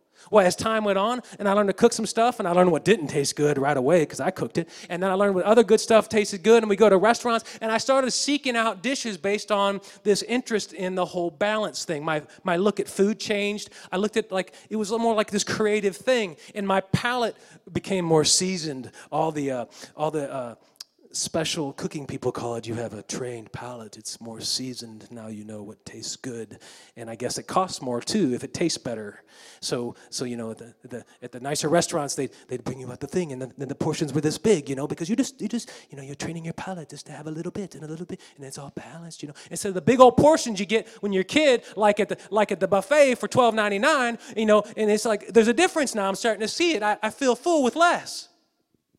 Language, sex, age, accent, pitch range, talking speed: English, male, 30-49, American, 155-230 Hz, 260 wpm